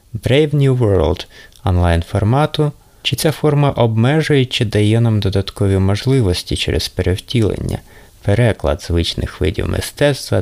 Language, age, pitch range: Ukrainian, 30-49, 90-115 Hz